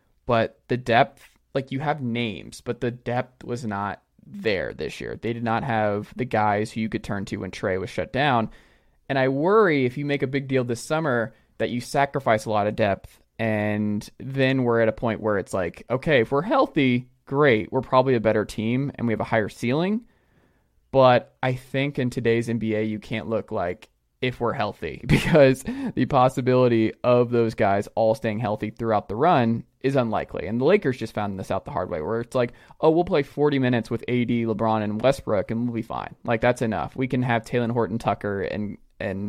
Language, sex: English, male